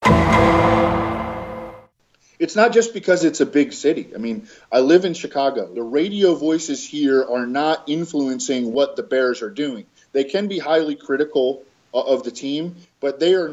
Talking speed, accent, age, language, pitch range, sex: 165 wpm, American, 20-39, English, 135-160 Hz, male